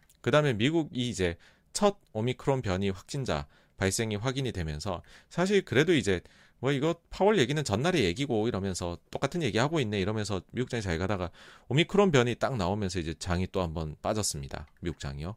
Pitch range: 85-135 Hz